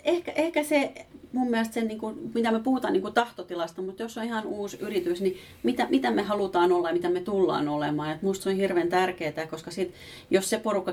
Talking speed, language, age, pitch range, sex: 230 wpm, Finnish, 30-49, 155-185 Hz, female